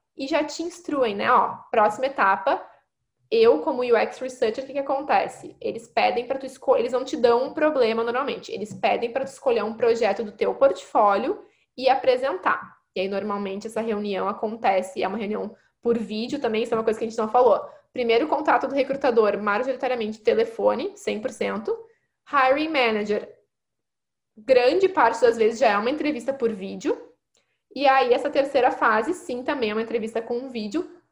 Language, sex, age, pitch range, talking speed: Portuguese, female, 10-29, 235-325 Hz, 180 wpm